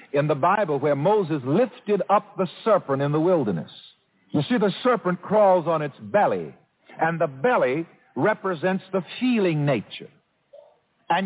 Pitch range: 165-230 Hz